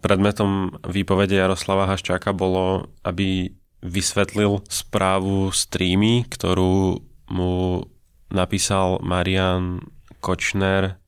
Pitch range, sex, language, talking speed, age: 90-100 Hz, male, Slovak, 75 wpm, 20-39